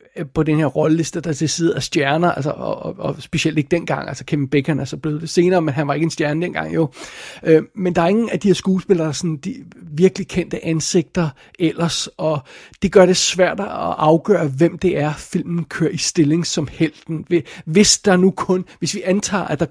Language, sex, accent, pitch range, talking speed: Danish, male, native, 155-180 Hz, 225 wpm